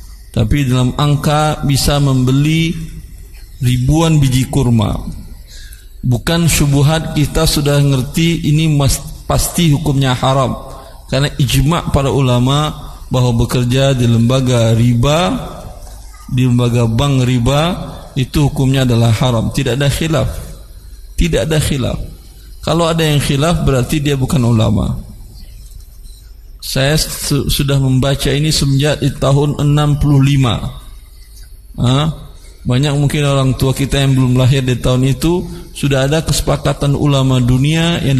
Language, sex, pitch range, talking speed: Indonesian, male, 125-145 Hz, 120 wpm